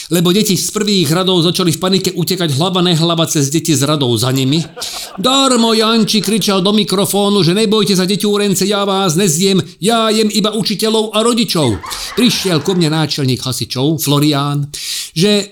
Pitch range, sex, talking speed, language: 145-195 Hz, male, 160 wpm, Slovak